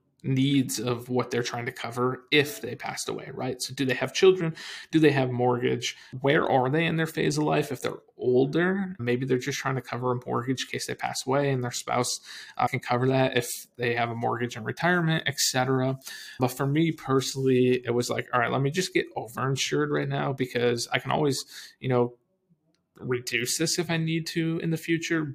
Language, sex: English, male